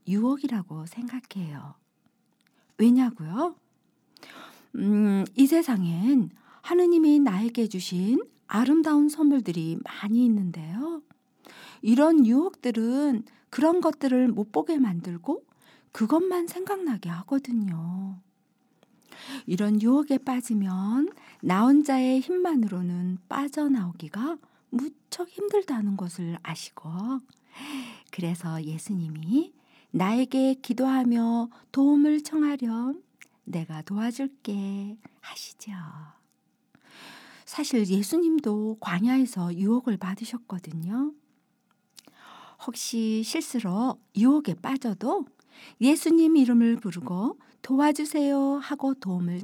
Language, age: Korean, 50-69